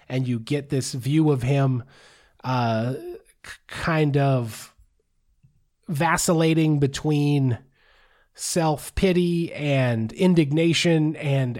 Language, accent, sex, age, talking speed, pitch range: English, American, male, 30-49, 85 wpm, 135-170 Hz